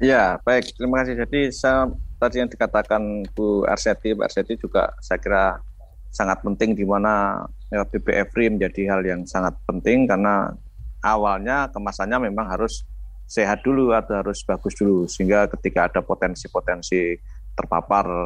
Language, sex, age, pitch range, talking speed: Indonesian, male, 20-39, 95-125 Hz, 140 wpm